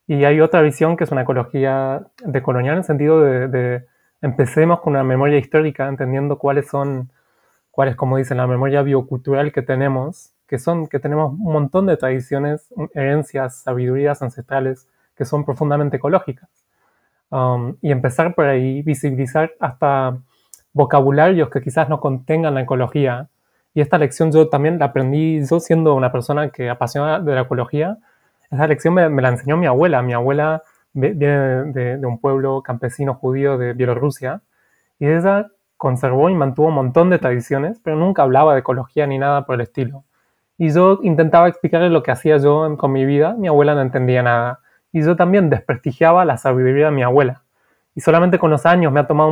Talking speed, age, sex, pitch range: 180 wpm, 20-39, male, 135-160 Hz